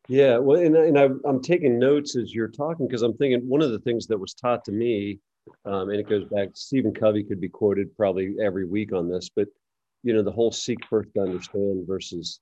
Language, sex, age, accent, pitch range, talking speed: English, male, 40-59, American, 95-115 Hz, 230 wpm